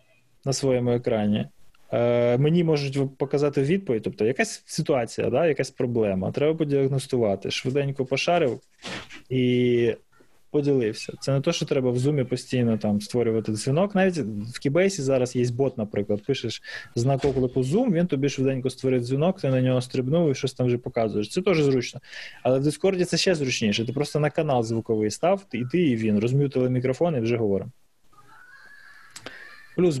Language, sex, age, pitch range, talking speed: Ukrainian, male, 20-39, 120-150 Hz, 160 wpm